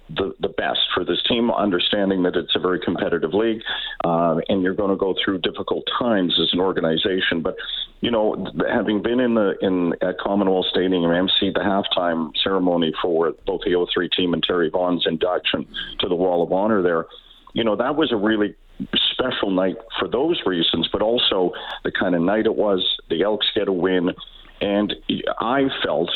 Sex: male